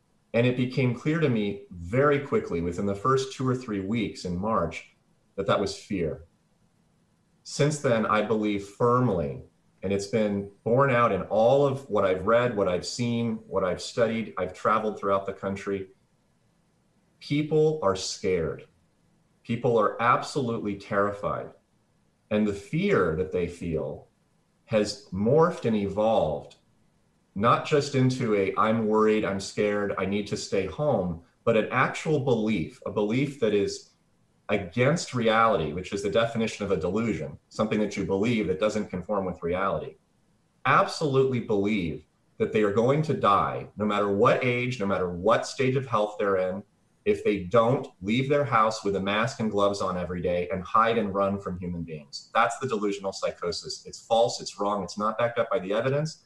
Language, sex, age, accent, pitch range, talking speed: English, male, 30-49, American, 100-130 Hz, 170 wpm